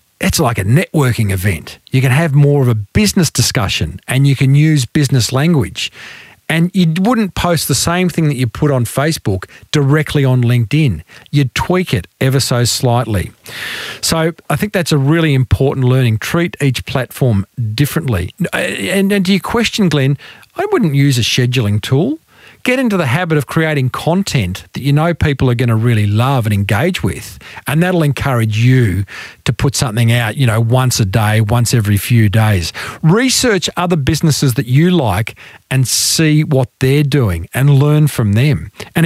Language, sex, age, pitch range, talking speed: English, male, 40-59, 120-165 Hz, 175 wpm